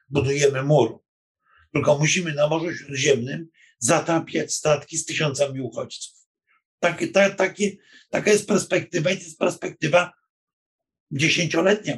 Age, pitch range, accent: 50-69, 140-170 Hz, native